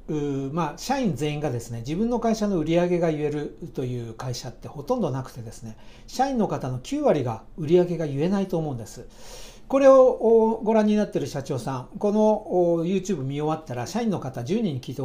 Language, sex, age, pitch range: Japanese, male, 60-79, 130-215 Hz